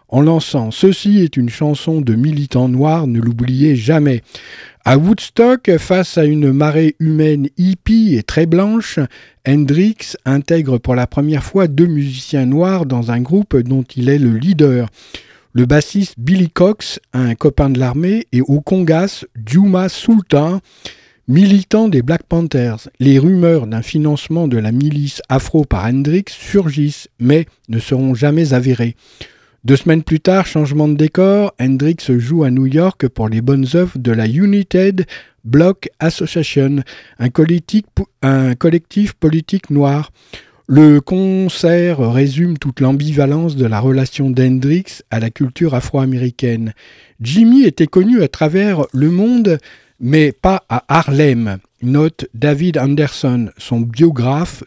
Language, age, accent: French, 50-69, French